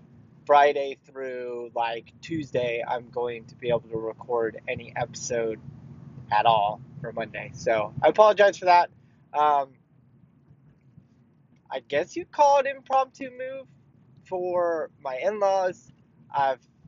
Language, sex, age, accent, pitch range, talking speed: English, male, 20-39, American, 120-155 Hz, 125 wpm